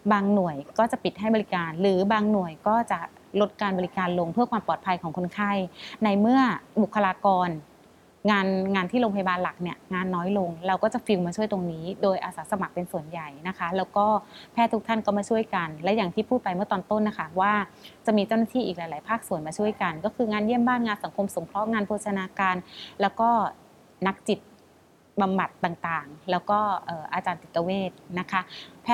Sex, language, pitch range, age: female, English, 180-225 Hz, 20-39